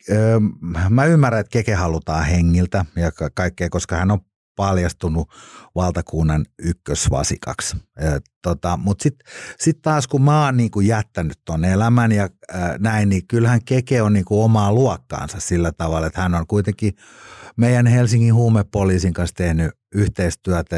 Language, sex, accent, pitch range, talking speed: Finnish, male, native, 85-115 Hz, 140 wpm